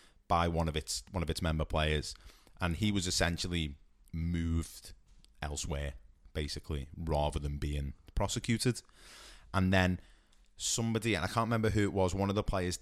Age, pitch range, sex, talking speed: 20-39, 80-95 Hz, male, 160 wpm